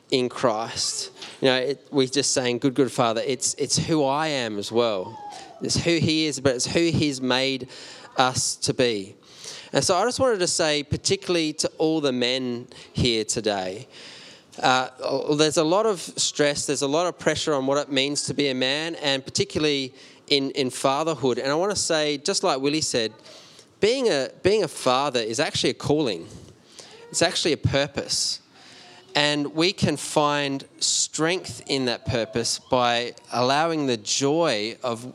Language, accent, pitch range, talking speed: English, Australian, 120-150 Hz, 175 wpm